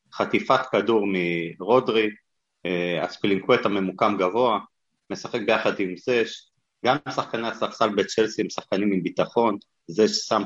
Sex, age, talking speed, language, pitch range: male, 30-49, 115 wpm, Hebrew, 100-125 Hz